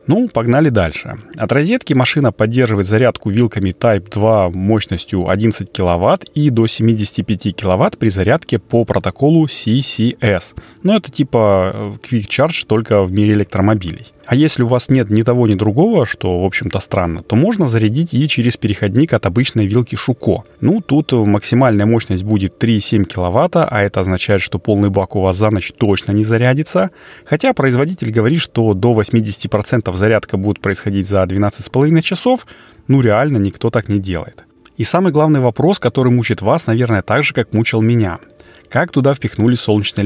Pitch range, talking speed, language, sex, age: 100-130 Hz, 165 wpm, Russian, male, 30-49